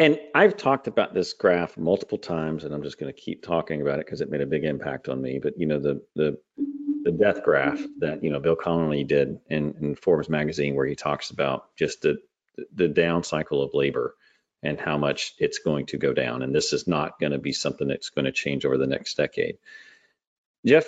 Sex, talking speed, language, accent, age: male, 220 wpm, English, American, 40-59